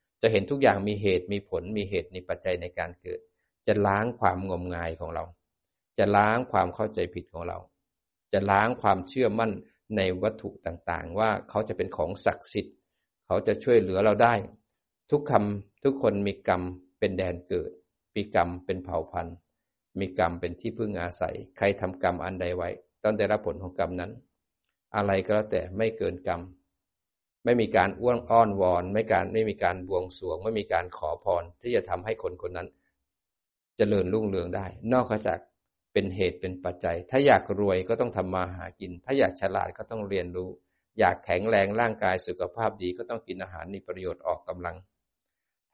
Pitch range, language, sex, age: 90-110 Hz, Thai, male, 60-79